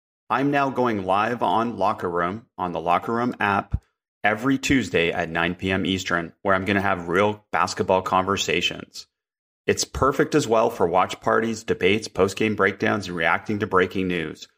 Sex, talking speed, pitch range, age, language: male, 175 wpm, 95-125 Hz, 30-49, English